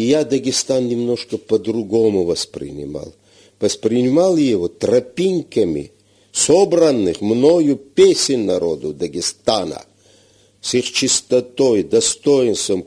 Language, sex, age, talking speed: Russian, male, 50-69, 85 wpm